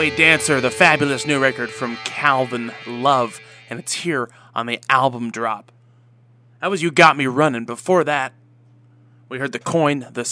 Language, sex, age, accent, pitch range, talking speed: English, male, 20-39, American, 115-135 Hz, 165 wpm